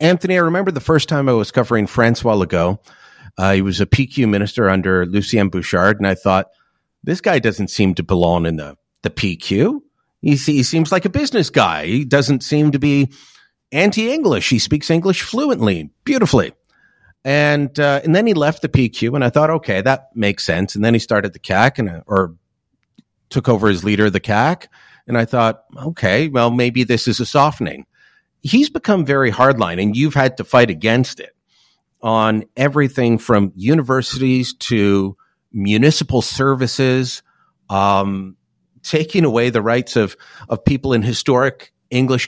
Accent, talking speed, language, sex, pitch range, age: American, 170 wpm, English, male, 105-140 Hz, 40-59